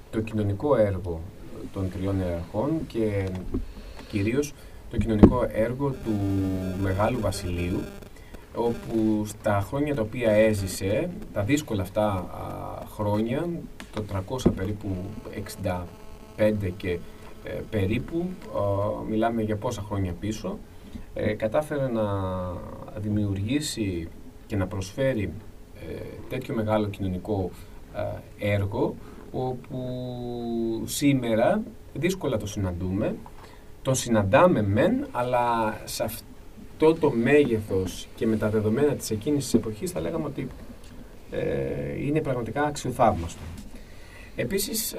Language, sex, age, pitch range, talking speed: Greek, male, 30-49, 95-120 Hz, 95 wpm